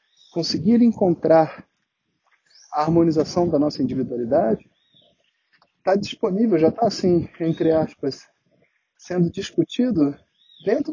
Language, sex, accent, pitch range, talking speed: Portuguese, male, Brazilian, 145-190 Hz, 95 wpm